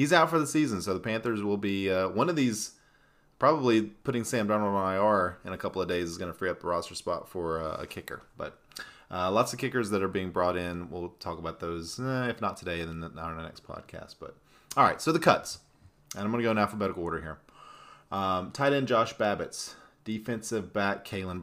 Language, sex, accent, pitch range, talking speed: English, male, American, 90-115 Hz, 235 wpm